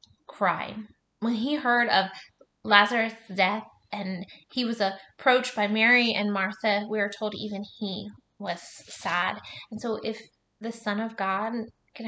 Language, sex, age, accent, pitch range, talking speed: English, female, 20-39, American, 200-230 Hz, 145 wpm